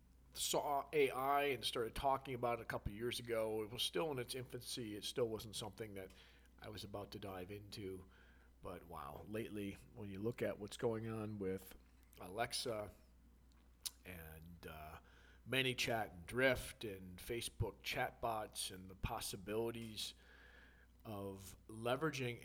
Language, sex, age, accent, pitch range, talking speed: English, male, 40-59, American, 90-115 Hz, 145 wpm